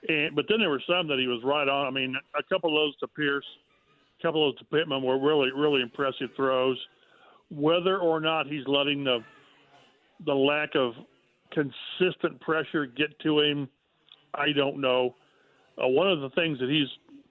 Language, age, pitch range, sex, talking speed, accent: English, 50-69, 135-170 Hz, male, 185 wpm, American